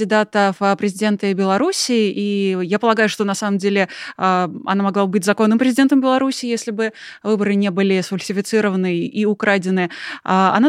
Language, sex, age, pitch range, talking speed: Russian, female, 20-39, 200-235 Hz, 145 wpm